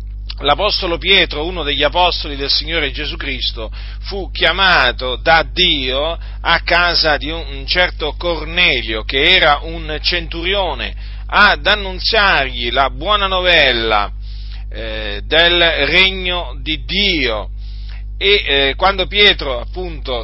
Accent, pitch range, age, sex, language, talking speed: native, 125-180 Hz, 40-59, male, Italian, 115 wpm